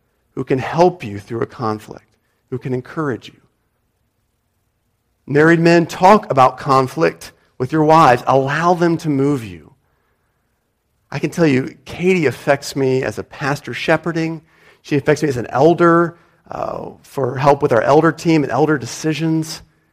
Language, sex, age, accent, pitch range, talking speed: English, male, 40-59, American, 115-155 Hz, 155 wpm